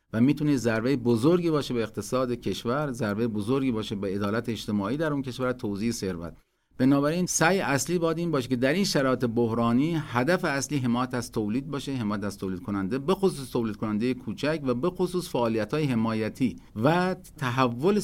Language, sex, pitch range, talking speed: Persian, male, 110-150 Hz, 185 wpm